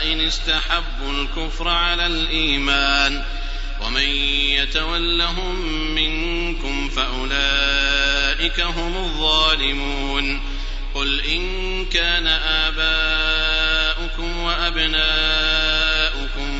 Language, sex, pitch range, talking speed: Arabic, male, 140-170 Hz, 60 wpm